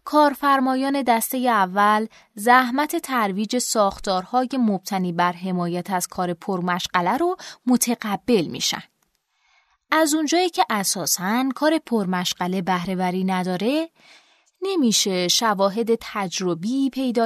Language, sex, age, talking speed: Persian, female, 20-39, 95 wpm